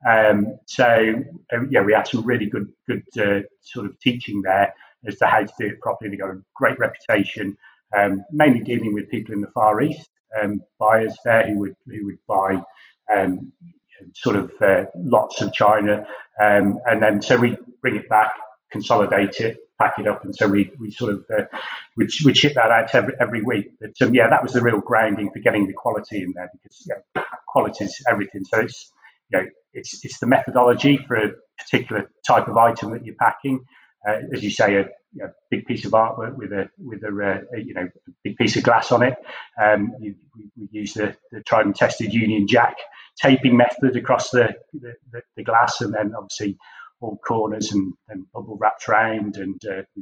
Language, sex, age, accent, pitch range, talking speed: English, male, 30-49, British, 100-120 Hz, 210 wpm